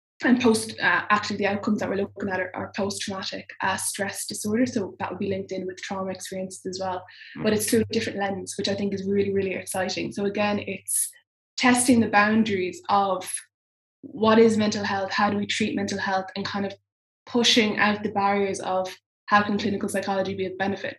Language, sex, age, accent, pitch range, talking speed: English, female, 10-29, Irish, 190-215 Hz, 205 wpm